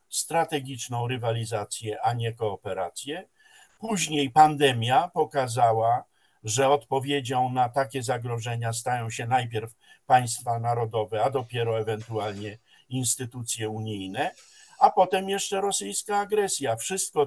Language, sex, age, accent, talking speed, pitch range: Polish, male, 50-69, native, 100 wpm, 125-170 Hz